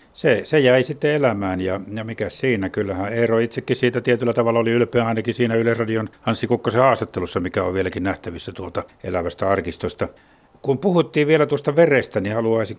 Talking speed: 175 wpm